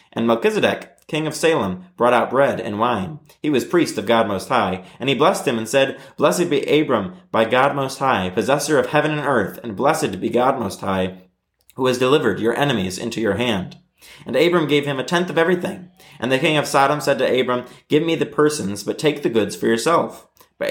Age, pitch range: 30-49, 115-145 Hz